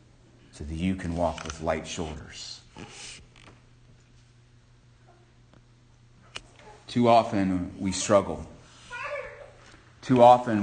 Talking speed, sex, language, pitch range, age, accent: 80 wpm, male, English, 90-120 Hz, 30-49, American